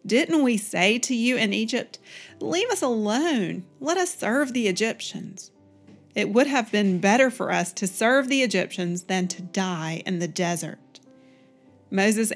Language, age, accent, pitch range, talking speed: English, 40-59, American, 185-230 Hz, 160 wpm